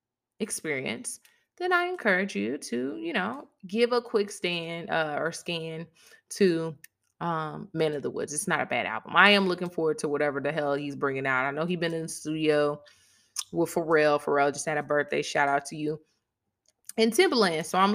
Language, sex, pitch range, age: English, female, 155-220 Hz, 20-39